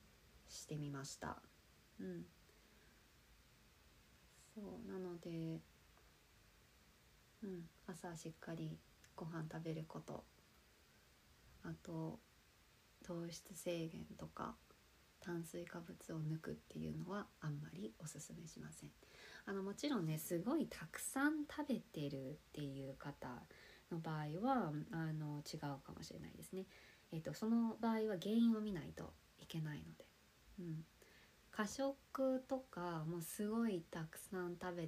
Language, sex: Japanese, female